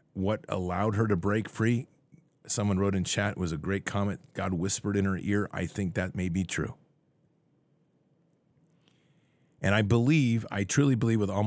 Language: English